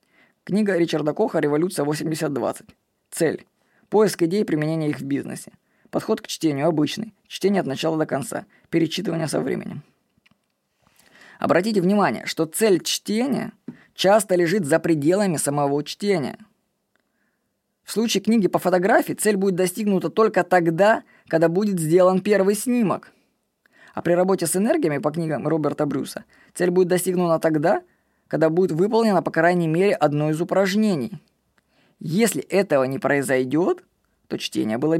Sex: female